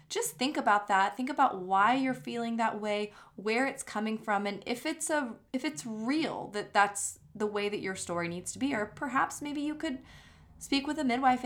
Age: 20-39